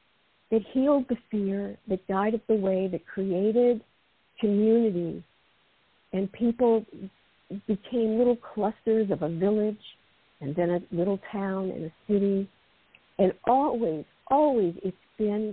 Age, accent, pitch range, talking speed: 50-69, American, 185-225 Hz, 125 wpm